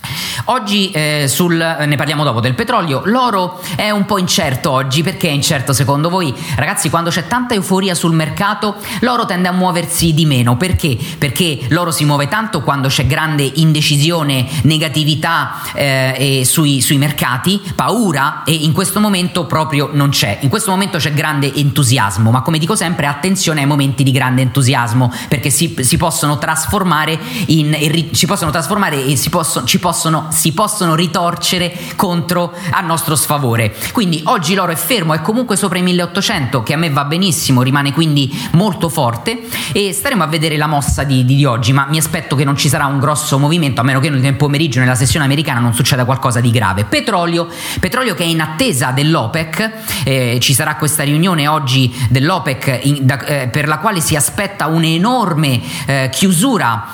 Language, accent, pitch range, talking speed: Italian, native, 140-175 Hz, 180 wpm